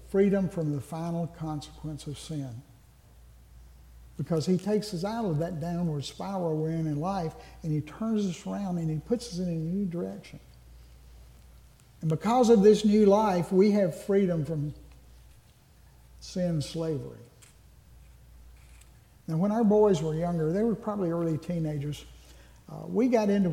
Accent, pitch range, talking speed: American, 150-195 Hz, 155 wpm